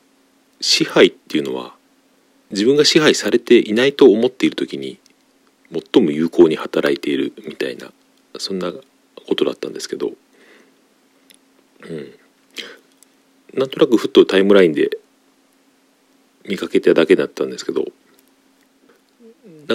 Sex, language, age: male, Japanese, 40-59